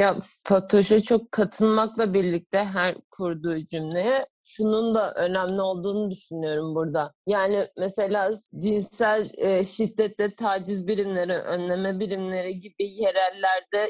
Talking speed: 110 wpm